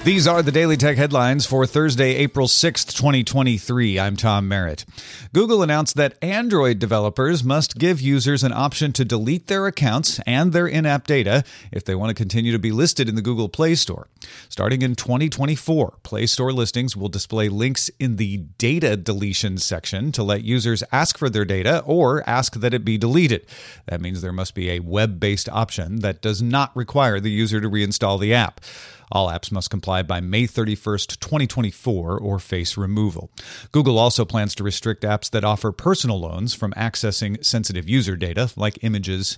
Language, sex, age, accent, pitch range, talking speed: English, male, 40-59, American, 105-130 Hz, 180 wpm